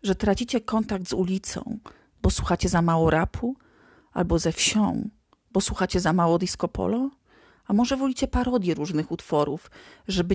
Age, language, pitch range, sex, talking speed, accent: 40-59, Polish, 170-230 Hz, female, 150 wpm, native